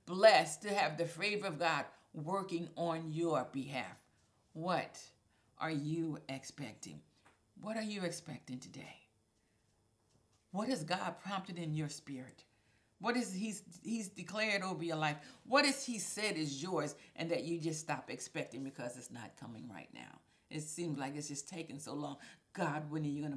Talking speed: 170 wpm